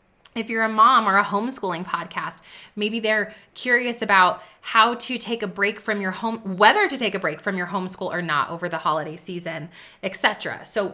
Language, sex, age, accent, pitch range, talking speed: English, female, 30-49, American, 175-225 Hz, 195 wpm